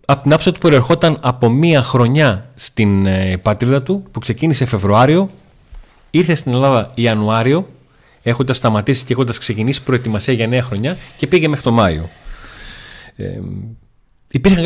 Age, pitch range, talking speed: 30-49, 115-150 Hz, 140 wpm